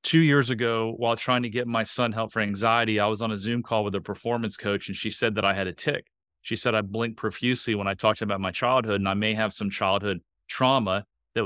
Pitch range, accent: 100-115 Hz, American